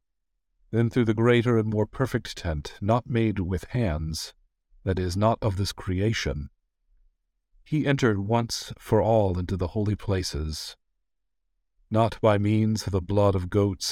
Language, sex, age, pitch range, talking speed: English, male, 50-69, 90-115 Hz, 150 wpm